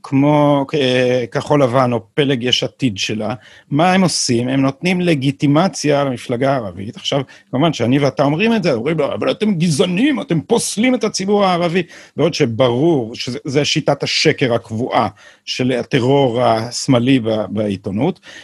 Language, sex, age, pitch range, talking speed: Hebrew, male, 50-69, 130-175 Hz, 135 wpm